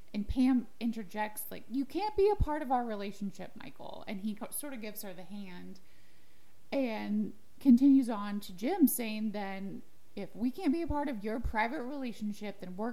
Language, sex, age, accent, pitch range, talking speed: English, female, 20-39, American, 195-245 Hz, 185 wpm